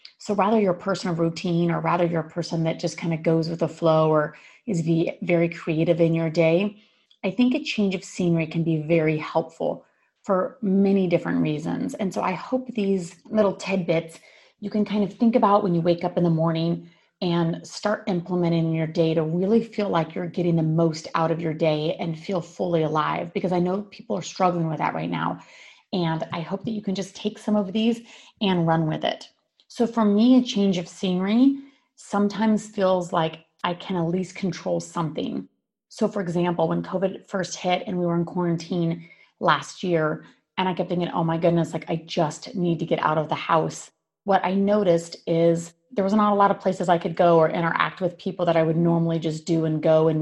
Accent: American